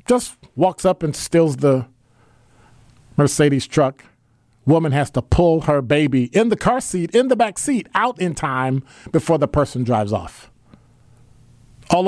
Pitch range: 120-175 Hz